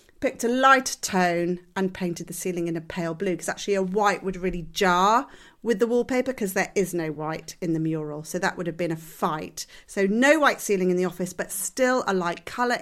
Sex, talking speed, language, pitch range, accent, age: female, 230 wpm, English, 180-235 Hz, British, 40-59